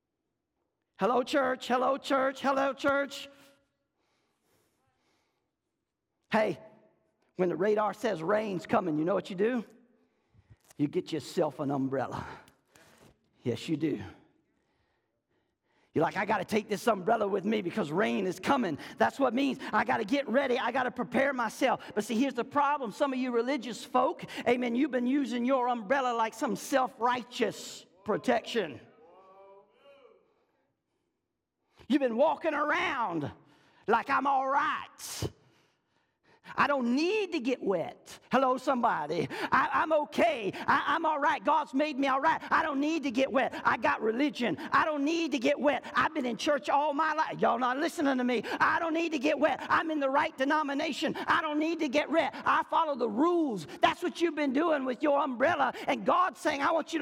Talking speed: 170 wpm